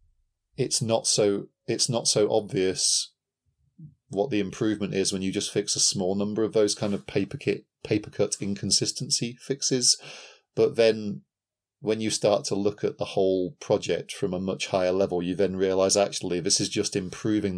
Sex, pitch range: male, 90-105 Hz